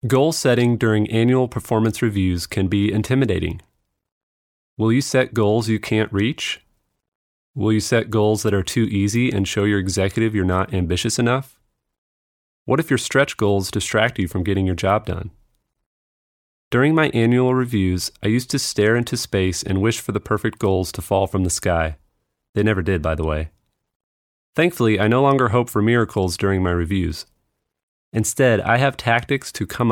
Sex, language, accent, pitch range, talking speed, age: male, English, American, 95-115 Hz, 175 wpm, 30-49